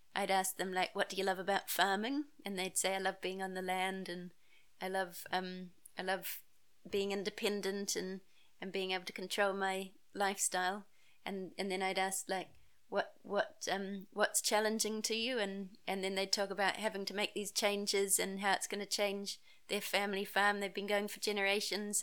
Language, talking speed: English, 200 wpm